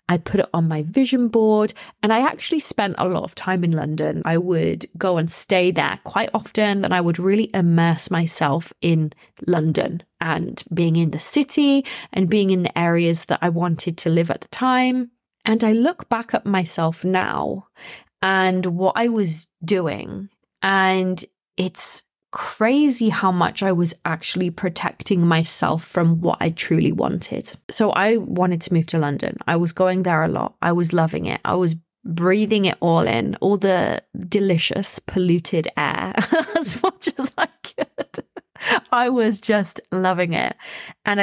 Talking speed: 170 wpm